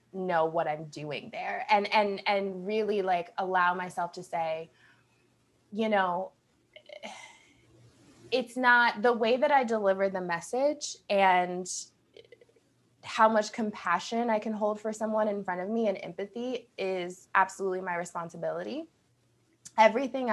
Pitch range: 180-225 Hz